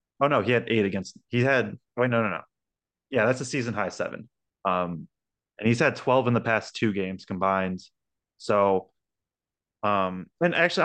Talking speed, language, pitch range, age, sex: 195 wpm, English, 100-125 Hz, 20-39, male